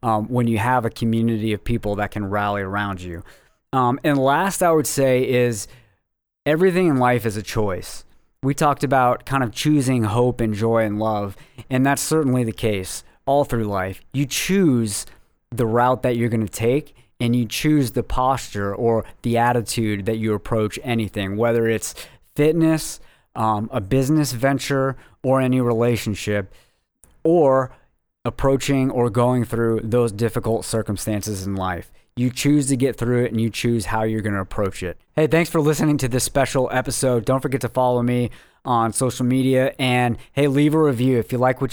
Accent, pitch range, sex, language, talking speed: American, 110-130 Hz, male, English, 180 wpm